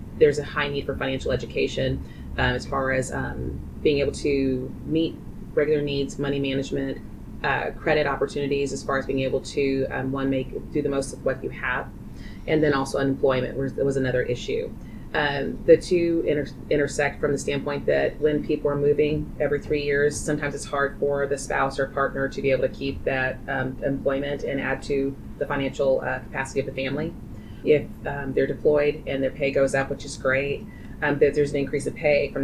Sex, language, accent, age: female, English, American, 30-49